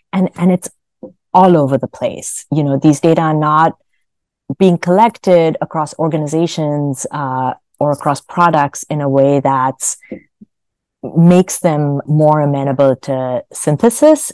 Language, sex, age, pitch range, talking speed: English, female, 30-49, 135-180 Hz, 130 wpm